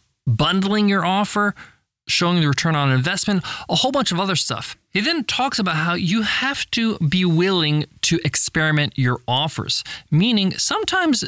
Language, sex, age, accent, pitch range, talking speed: English, male, 20-39, American, 145-200 Hz, 160 wpm